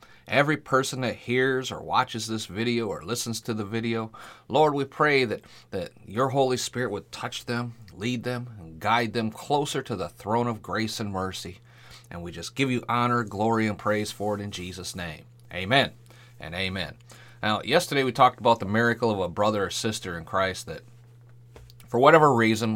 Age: 40-59